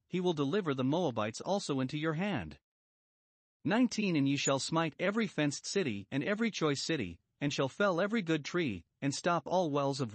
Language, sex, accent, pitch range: English, male, American, 125-180 Hz